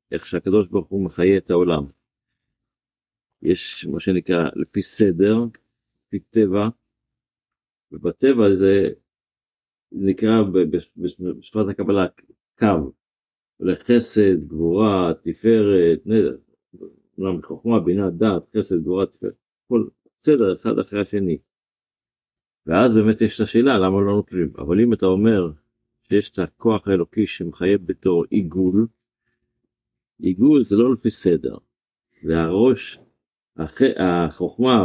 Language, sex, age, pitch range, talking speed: Hebrew, male, 50-69, 90-115 Hz, 105 wpm